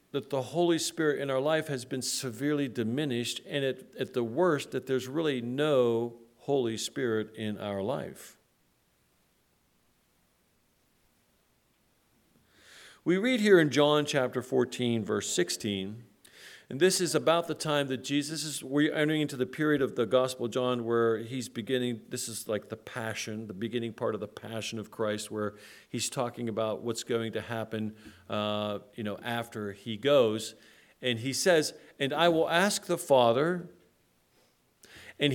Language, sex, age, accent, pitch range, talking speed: English, male, 50-69, American, 115-155 Hz, 160 wpm